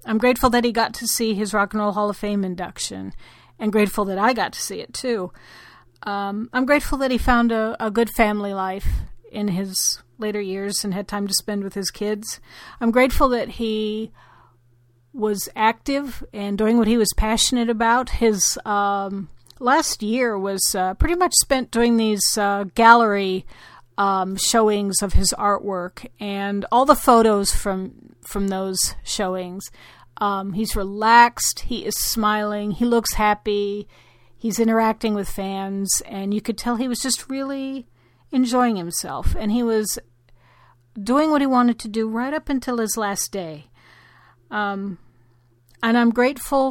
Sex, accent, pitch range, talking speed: female, American, 195-235 Hz, 165 wpm